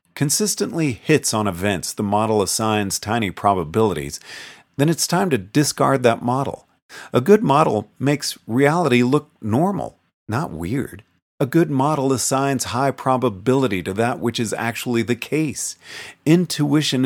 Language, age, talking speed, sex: English, 40-59, 135 wpm, male